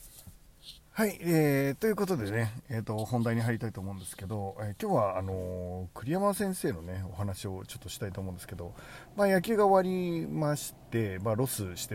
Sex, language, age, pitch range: male, Japanese, 40-59, 100-140 Hz